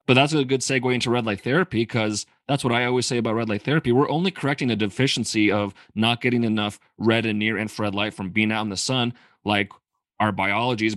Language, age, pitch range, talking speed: English, 30-49, 100-120 Hz, 235 wpm